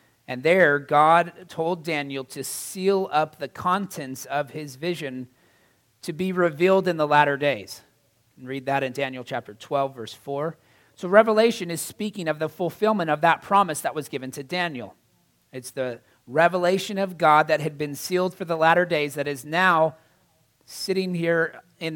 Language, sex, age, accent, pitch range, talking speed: English, male, 40-59, American, 125-160 Hz, 170 wpm